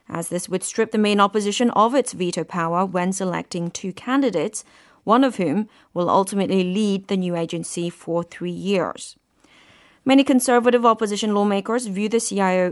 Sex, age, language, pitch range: female, 30-49, Korean, 180-235 Hz